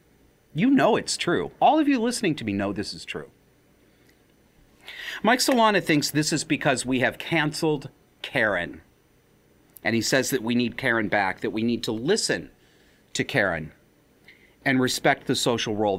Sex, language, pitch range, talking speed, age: male, English, 110-140 Hz, 165 wpm, 40-59